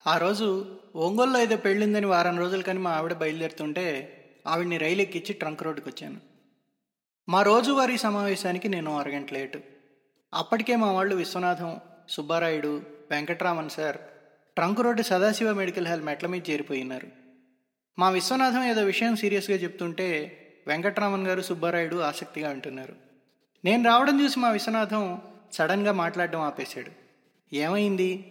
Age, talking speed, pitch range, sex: 20-39, 125 wpm, 160-215 Hz, male